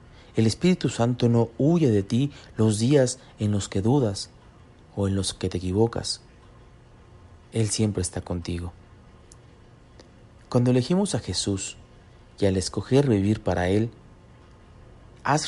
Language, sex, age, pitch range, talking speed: Spanish, male, 40-59, 95-120 Hz, 130 wpm